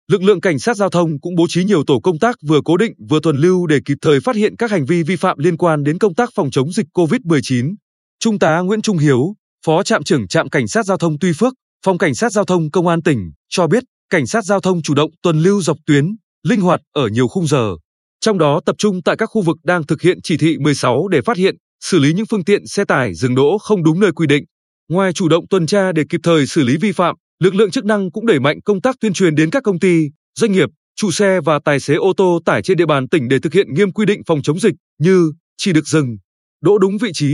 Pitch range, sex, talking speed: 150-205 Hz, male, 270 wpm